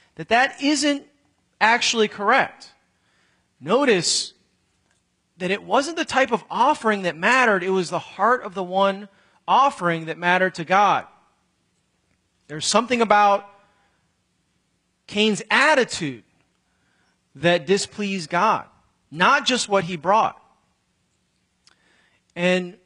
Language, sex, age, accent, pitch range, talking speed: English, male, 30-49, American, 170-210 Hz, 110 wpm